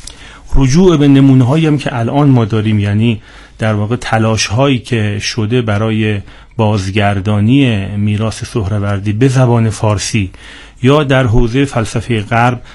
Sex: male